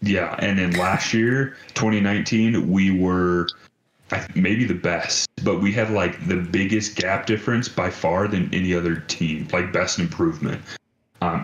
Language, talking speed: English, 150 wpm